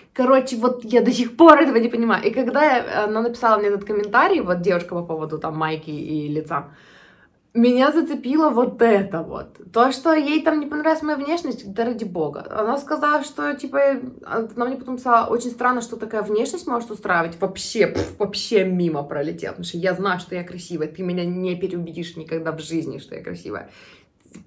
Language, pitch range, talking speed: Russian, 185-245 Hz, 185 wpm